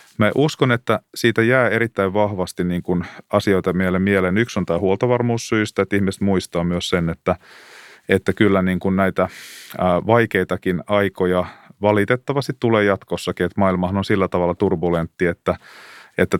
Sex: male